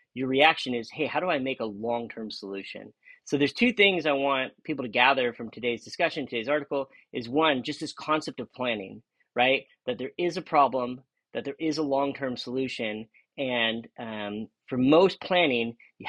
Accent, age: American, 30-49